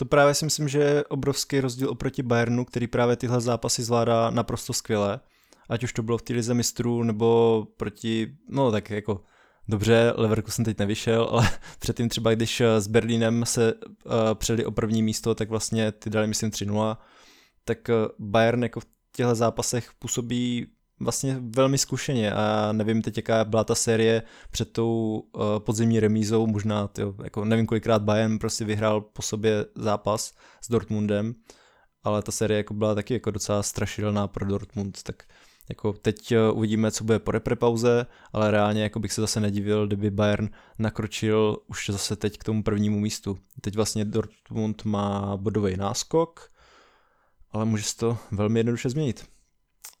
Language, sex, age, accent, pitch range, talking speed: Czech, male, 20-39, native, 105-120 Hz, 165 wpm